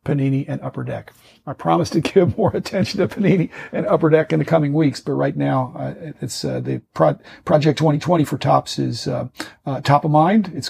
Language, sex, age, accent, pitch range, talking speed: English, male, 50-69, American, 130-160 Hz, 210 wpm